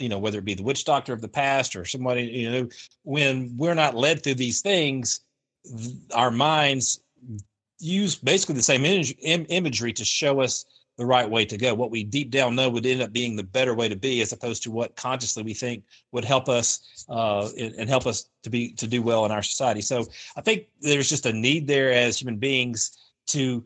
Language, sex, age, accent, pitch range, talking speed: English, male, 40-59, American, 115-135 Hz, 215 wpm